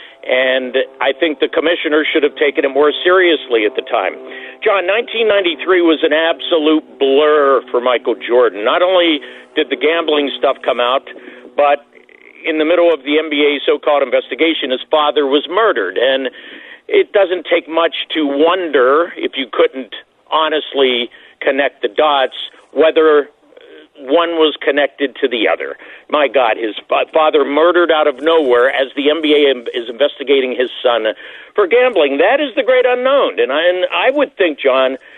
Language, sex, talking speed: English, male, 160 wpm